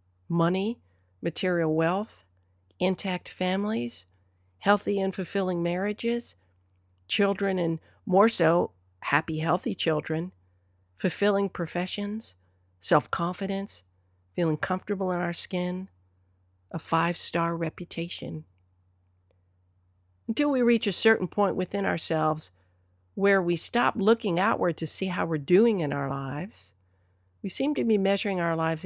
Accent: American